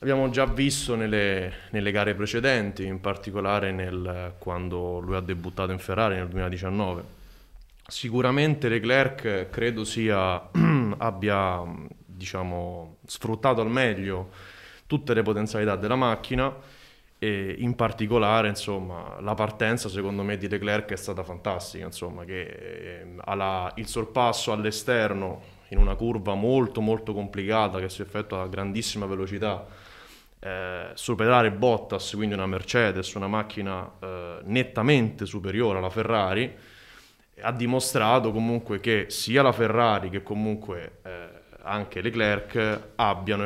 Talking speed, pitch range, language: 125 wpm, 95-115 Hz, Italian